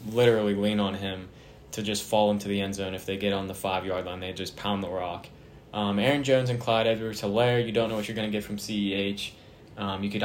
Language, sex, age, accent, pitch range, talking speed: English, male, 10-29, American, 100-115 Hz, 250 wpm